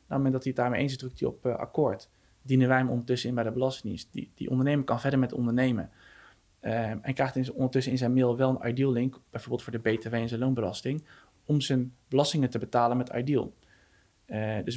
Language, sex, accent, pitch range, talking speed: Dutch, male, Dutch, 120-135 Hz, 230 wpm